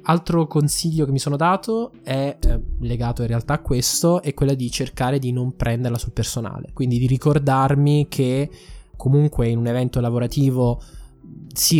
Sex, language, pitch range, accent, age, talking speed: male, Italian, 120-145 Hz, native, 20-39, 165 wpm